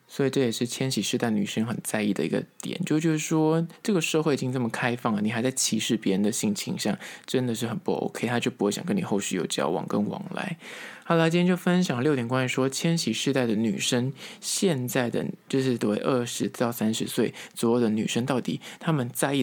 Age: 20-39